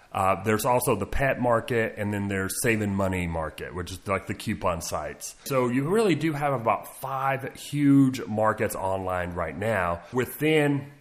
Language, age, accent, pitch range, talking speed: English, 30-49, American, 110-145 Hz, 170 wpm